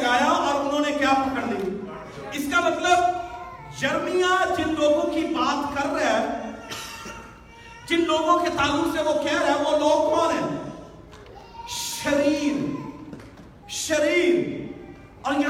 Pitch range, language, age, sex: 285-345 Hz, Urdu, 40-59, male